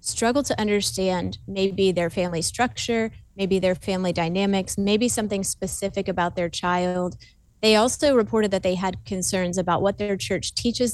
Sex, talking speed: female, 160 wpm